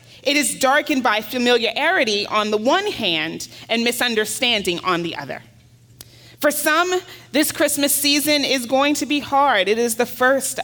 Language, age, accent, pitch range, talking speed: English, 30-49, American, 210-275 Hz, 160 wpm